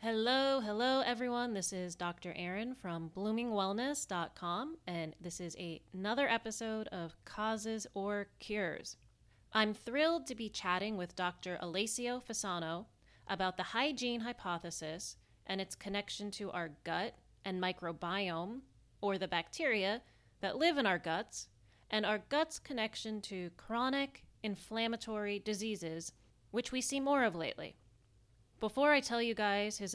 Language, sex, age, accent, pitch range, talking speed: English, female, 30-49, American, 180-225 Hz, 135 wpm